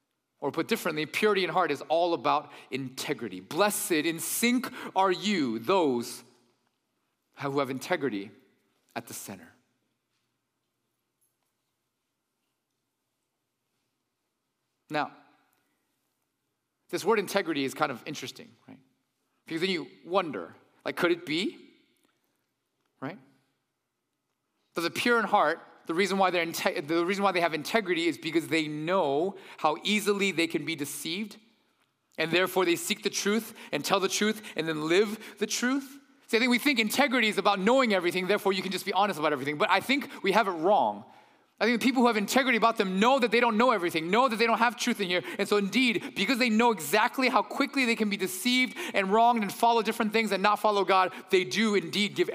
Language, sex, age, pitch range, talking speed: English, male, 30-49, 170-235 Hz, 180 wpm